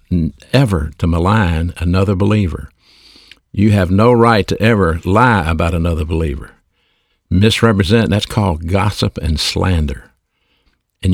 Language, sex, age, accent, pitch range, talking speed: English, male, 60-79, American, 85-105 Hz, 120 wpm